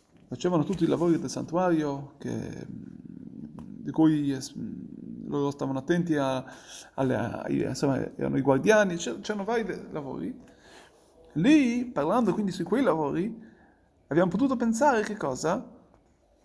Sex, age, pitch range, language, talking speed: male, 30-49, 175-225 Hz, Italian, 125 wpm